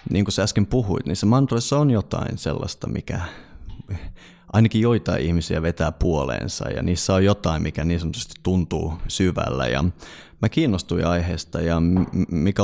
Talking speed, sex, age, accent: 150 wpm, male, 30-49, native